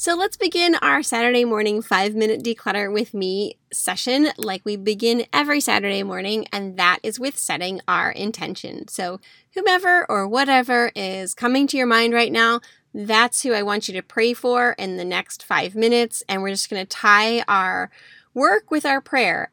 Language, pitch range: English, 195-245 Hz